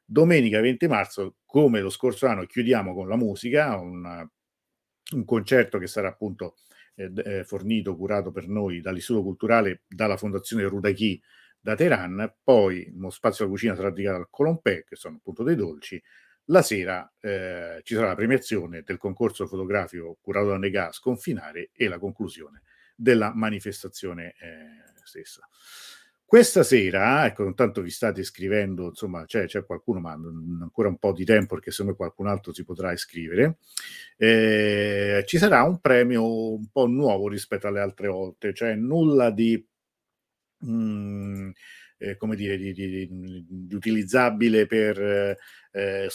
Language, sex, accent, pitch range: Italian, male, native, 95-110 Hz